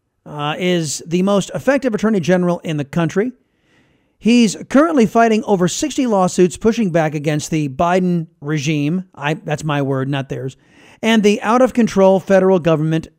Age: 40-59